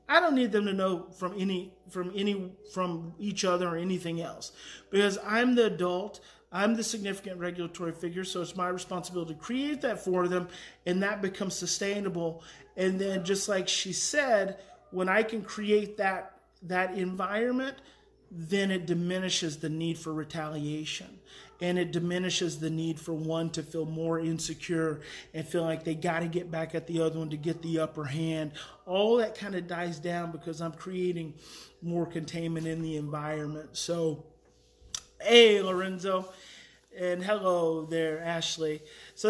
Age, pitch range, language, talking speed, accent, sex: 30-49, 165-210 Hz, English, 165 wpm, American, male